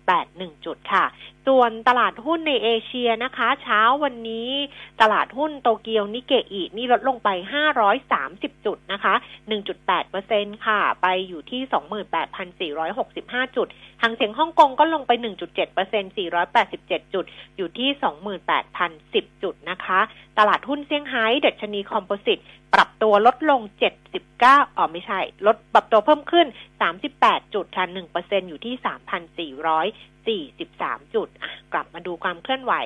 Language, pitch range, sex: Thai, 190-260 Hz, female